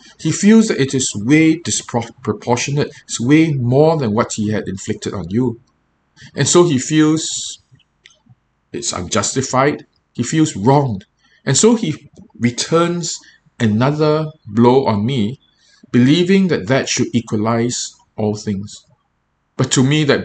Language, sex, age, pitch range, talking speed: English, male, 50-69, 110-145 Hz, 130 wpm